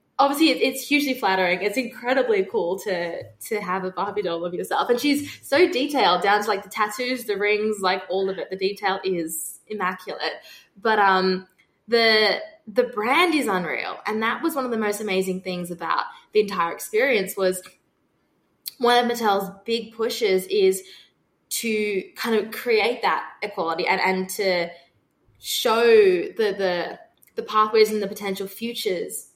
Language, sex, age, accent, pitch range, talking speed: English, female, 20-39, Australian, 185-245 Hz, 160 wpm